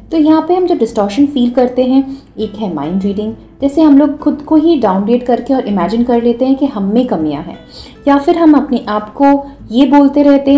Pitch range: 195-275 Hz